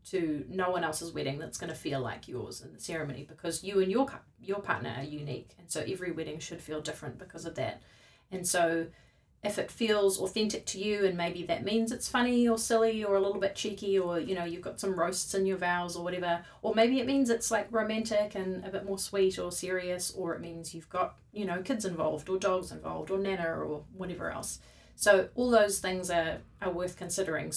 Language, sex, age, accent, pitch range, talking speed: English, female, 30-49, Australian, 170-200 Hz, 225 wpm